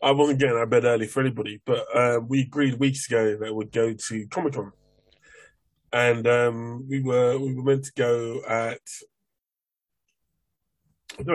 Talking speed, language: 175 wpm, English